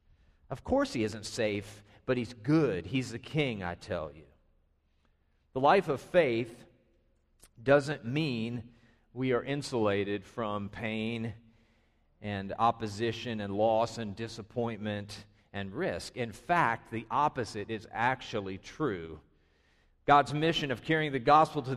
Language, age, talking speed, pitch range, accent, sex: English, 40-59, 130 wpm, 105-145 Hz, American, male